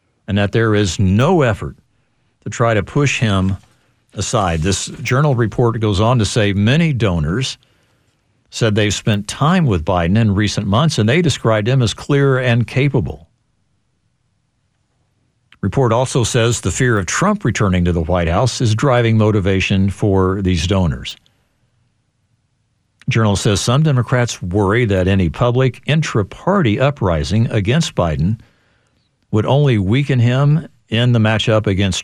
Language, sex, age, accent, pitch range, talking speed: English, male, 60-79, American, 100-125 Hz, 140 wpm